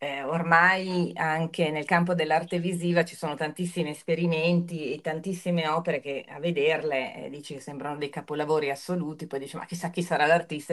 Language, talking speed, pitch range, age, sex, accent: Italian, 175 wpm, 150-205 Hz, 30-49, female, native